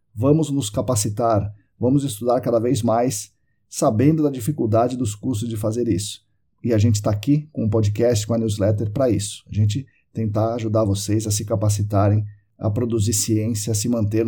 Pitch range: 110-135 Hz